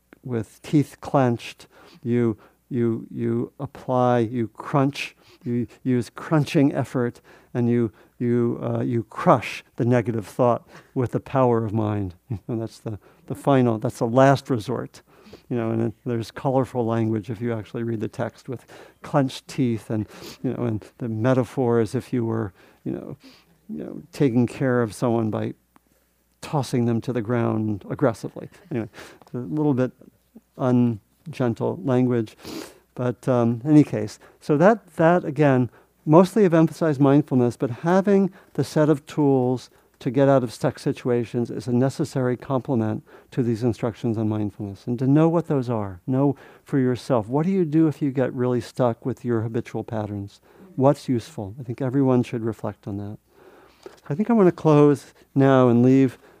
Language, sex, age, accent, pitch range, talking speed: English, male, 50-69, American, 115-140 Hz, 165 wpm